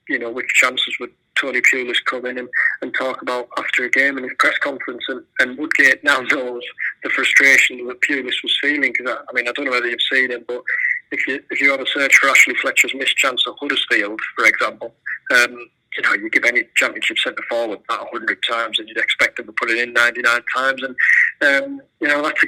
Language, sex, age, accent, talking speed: English, male, 30-49, British, 230 wpm